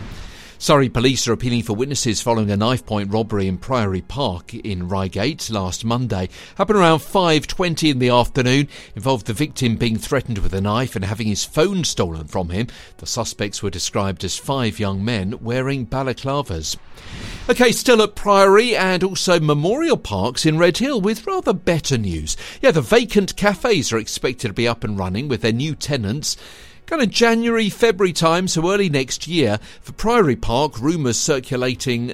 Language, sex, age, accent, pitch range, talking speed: English, male, 50-69, British, 100-145 Hz, 175 wpm